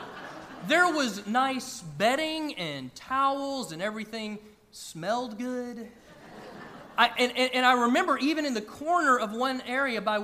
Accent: American